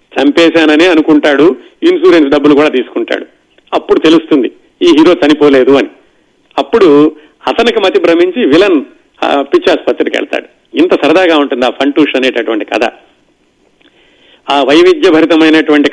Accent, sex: native, male